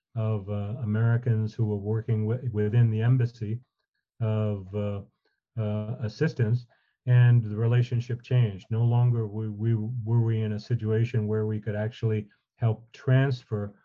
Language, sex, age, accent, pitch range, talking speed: English, male, 40-59, American, 105-120 Hz, 135 wpm